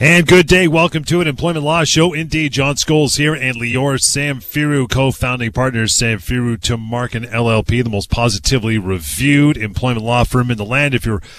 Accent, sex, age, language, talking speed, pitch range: American, male, 30-49, English, 175 wpm, 110-140 Hz